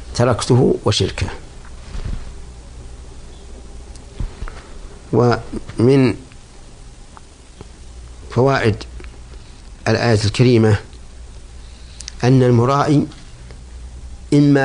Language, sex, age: Arabic, male, 50-69